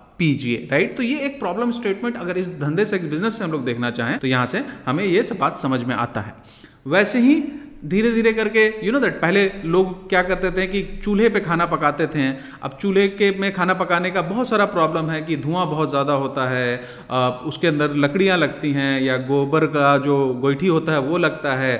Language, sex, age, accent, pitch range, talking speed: Hindi, male, 30-49, native, 145-215 Hz, 220 wpm